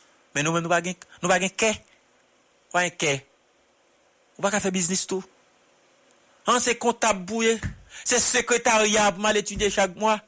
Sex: male